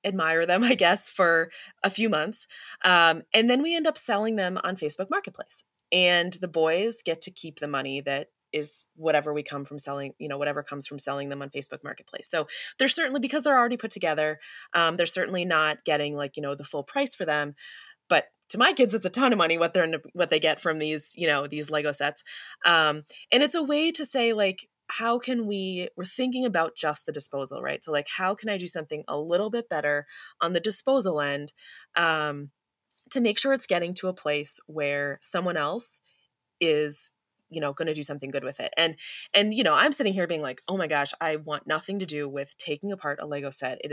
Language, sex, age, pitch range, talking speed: English, female, 20-39, 145-215 Hz, 225 wpm